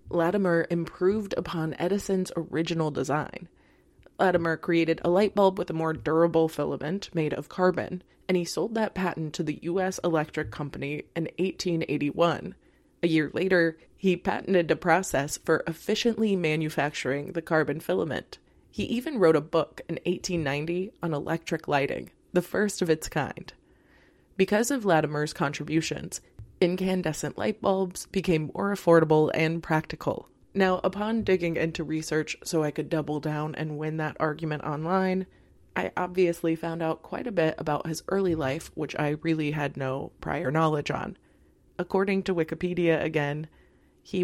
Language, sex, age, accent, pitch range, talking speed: English, female, 20-39, American, 155-180 Hz, 150 wpm